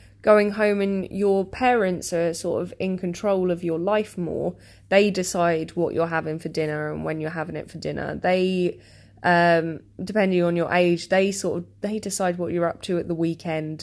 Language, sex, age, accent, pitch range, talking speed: English, female, 20-39, British, 155-185 Hz, 200 wpm